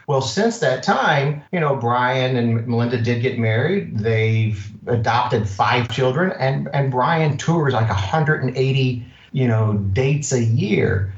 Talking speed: 145 wpm